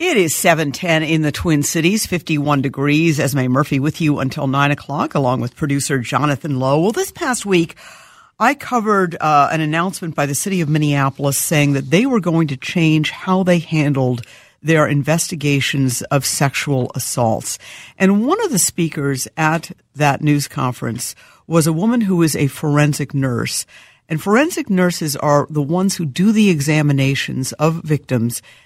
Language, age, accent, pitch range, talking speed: English, 60-79, American, 145-180 Hz, 170 wpm